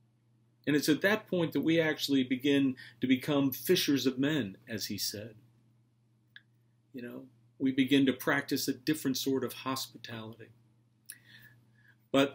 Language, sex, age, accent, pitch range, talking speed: English, male, 50-69, American, 115-130 Hz, 140 wpm